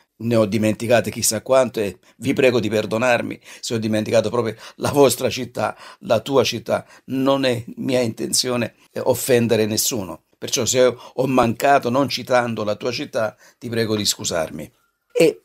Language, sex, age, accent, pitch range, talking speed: Italian, male, 50-69, native, 110-150 Hz, 155 wpm